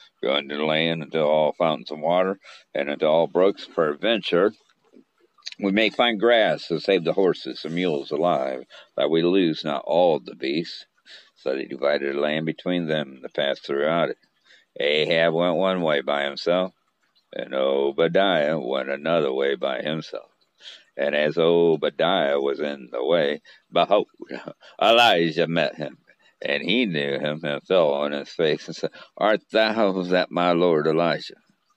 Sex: male